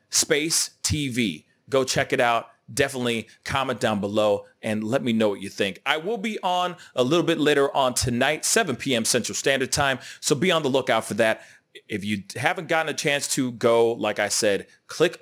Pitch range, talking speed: 115-165 Hz, 200 wpm